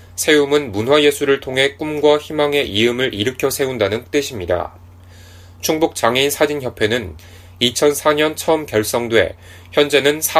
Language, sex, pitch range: Korean, male, 90-145 Hz